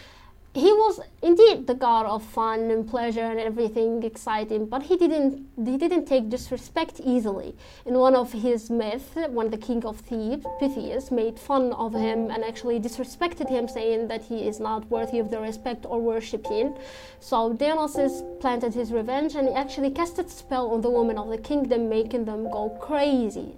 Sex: female